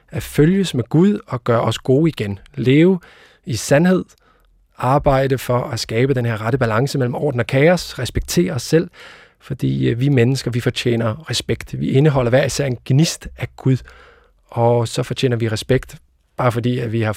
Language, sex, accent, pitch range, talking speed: Danish, male, native, 115-135 Hz, 180 wpm